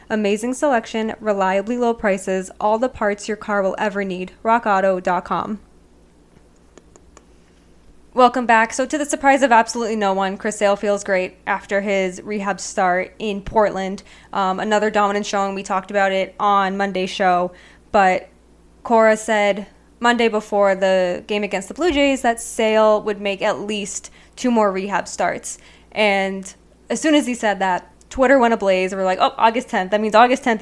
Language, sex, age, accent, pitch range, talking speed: English, female, 10-29, American, 195-235 Hz, 165 wpm